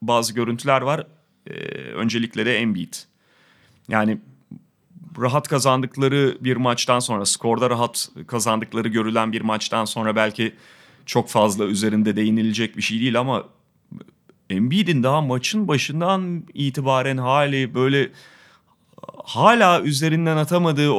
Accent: native